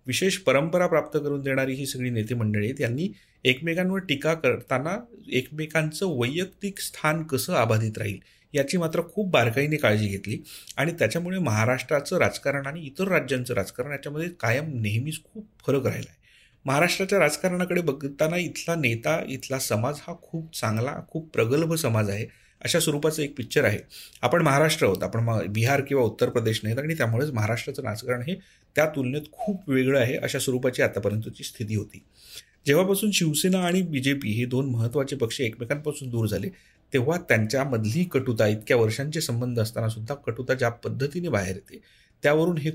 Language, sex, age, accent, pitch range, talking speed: Marathi, male, 40-59, native, 115-160 Hz, 140 wpm